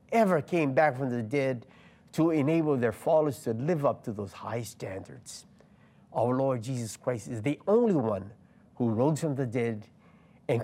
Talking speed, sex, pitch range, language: 175 wpm, male, 130-190 Hz, English